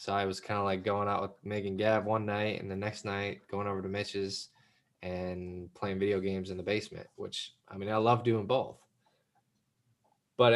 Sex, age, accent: male, 20-39, American